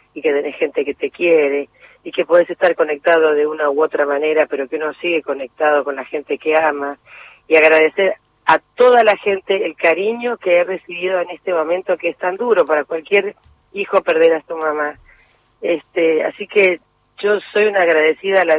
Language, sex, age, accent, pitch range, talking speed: Spanish, female, 40-59, Argentinian, 150-185 Hz, 195 wpm